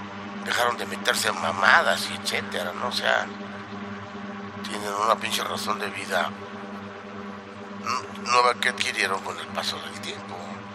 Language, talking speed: Spanish, 135 wpm